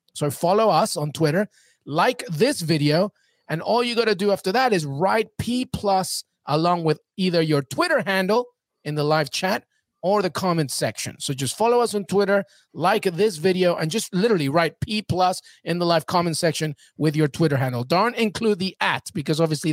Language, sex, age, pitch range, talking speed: English, male, 30-49, 150-205 Hz, 195 wpm